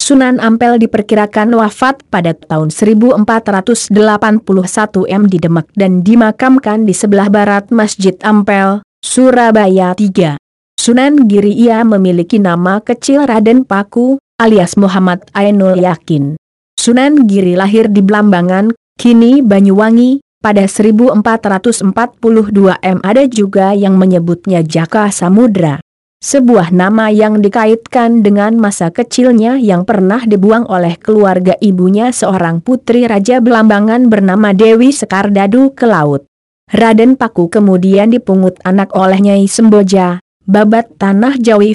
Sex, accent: female, native